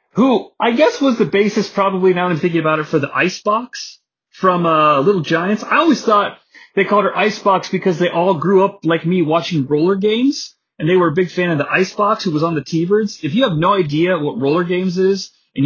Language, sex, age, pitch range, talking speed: English, male, 30-49, 150-200 Hz, 235 wpm